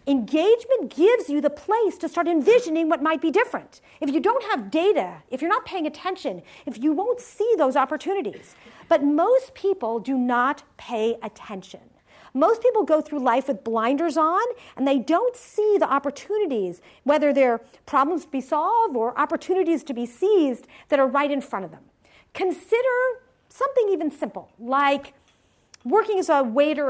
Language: English